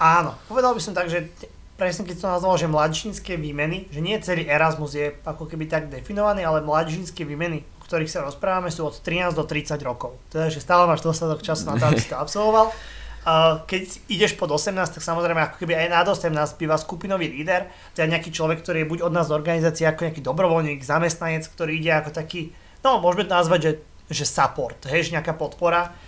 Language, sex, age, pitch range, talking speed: Slovak, male, 20-39, 150-175 Hz, 205 wpm